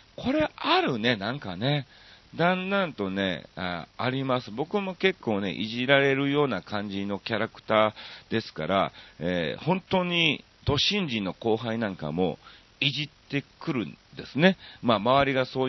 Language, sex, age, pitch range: Japanese, male, 40-59, 100-155 Hz